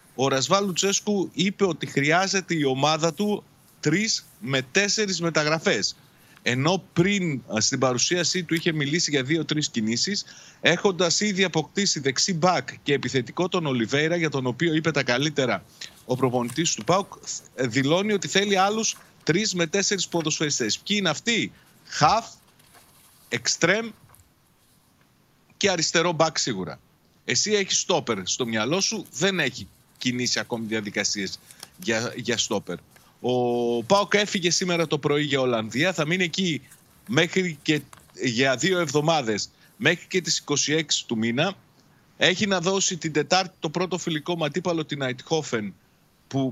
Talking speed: 140 wpm